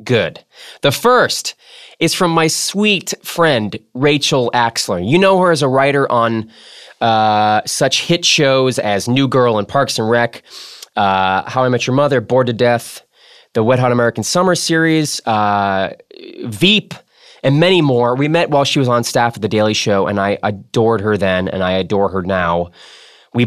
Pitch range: 105-140 Hz